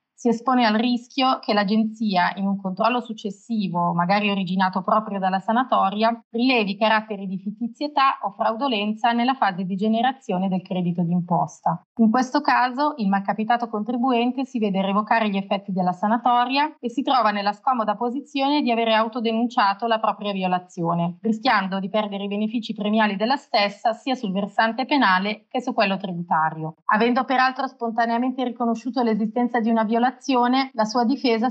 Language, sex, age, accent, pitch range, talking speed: Italian, female, 30-49, native, 200-245 Hz, 150 wpm